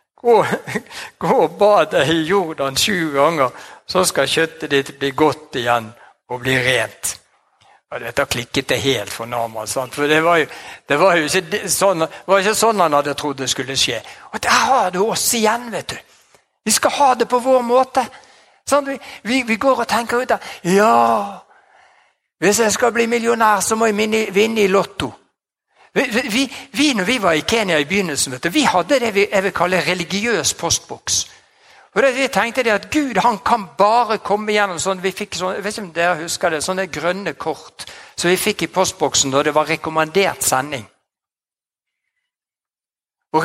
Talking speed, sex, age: 180 wpm, male, 60-79